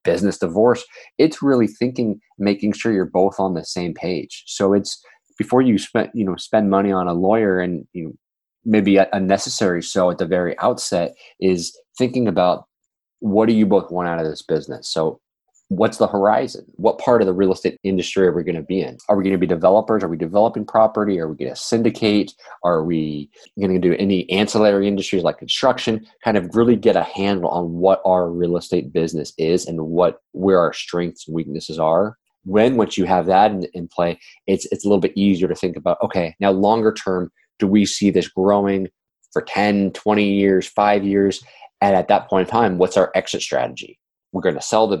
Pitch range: 85-100 Hz